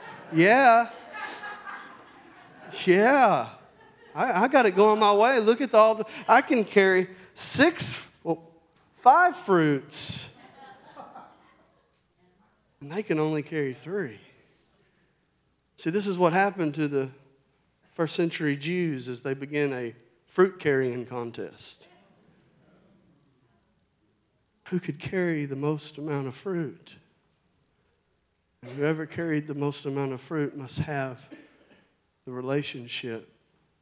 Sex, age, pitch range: male, 40-59, 130-185 Hz